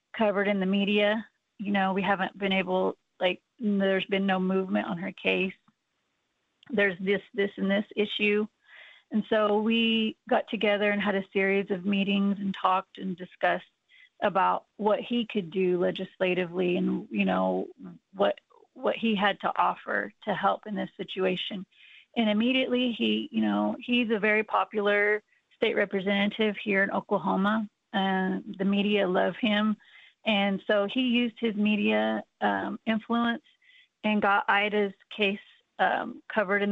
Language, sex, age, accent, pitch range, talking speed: English, female, 30-49, American, 190-220 Hz, 150 wpm